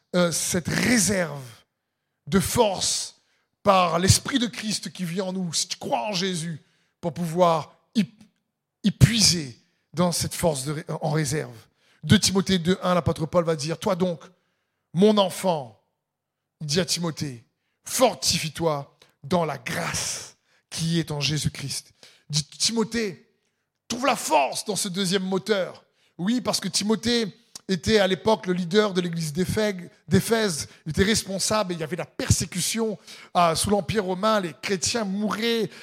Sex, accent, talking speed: male, French, 145 wpm